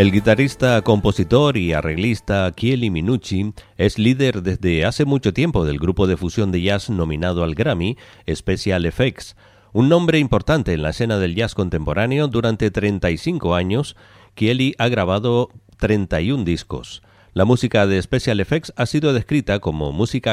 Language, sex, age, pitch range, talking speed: Spanish, male, 40-59, 90-120 Hz, 150 wpm